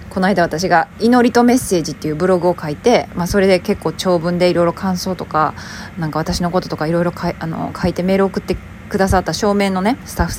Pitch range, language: 170-210 Hz, Japanese